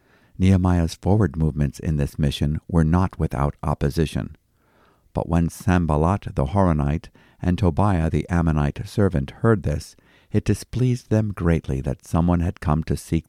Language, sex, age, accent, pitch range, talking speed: English, male, 50-69, American, 80-100 Hz, 145 wpm